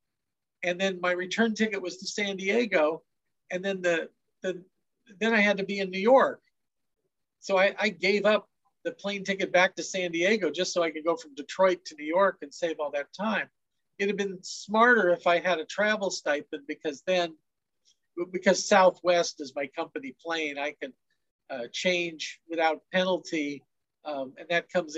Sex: male